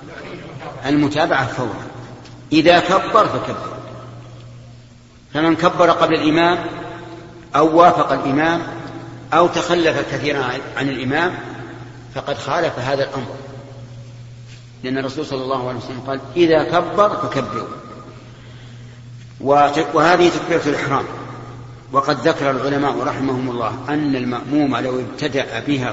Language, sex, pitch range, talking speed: Arabic, male, 125-150 Hz, 100 wpm